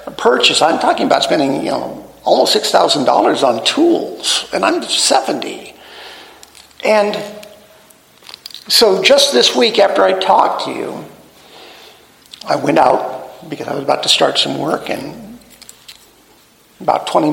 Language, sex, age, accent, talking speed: English, male, 50-69, American, 140 wpm